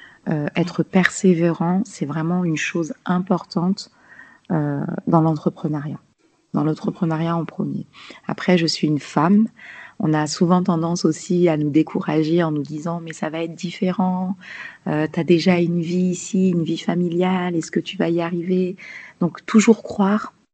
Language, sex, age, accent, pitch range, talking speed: French, female, 30-49, French, 165-195 Hz, 165 wpm